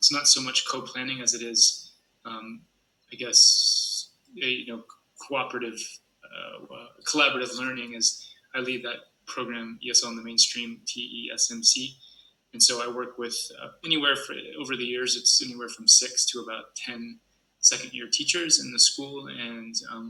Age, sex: 20-39, male